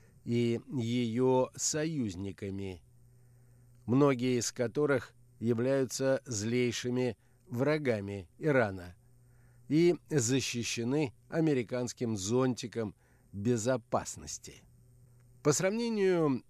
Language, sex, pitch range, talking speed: Russian, male, 120-140 Hz, 60 wpm